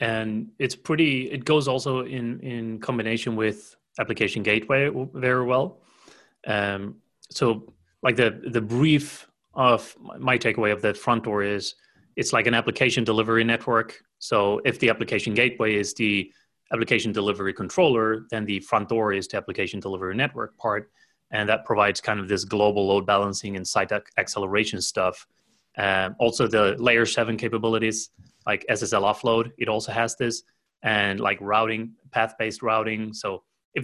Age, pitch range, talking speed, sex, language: 30-49, 100-115 Hz, 155 wpm, male, English